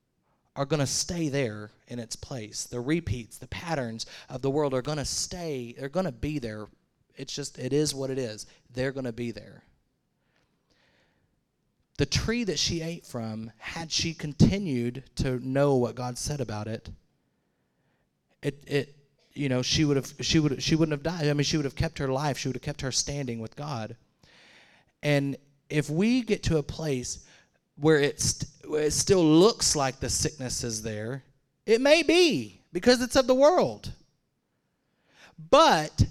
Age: 30-49